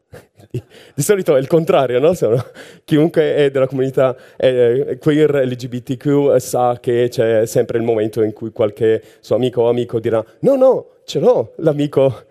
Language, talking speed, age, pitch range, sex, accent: Italian, 170 wpm, 30-49, 130-185 Hz, male, native